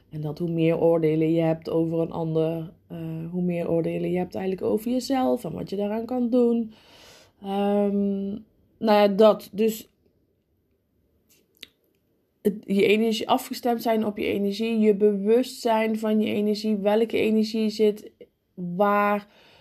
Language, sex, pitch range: Dutch, female, 175-210 Hz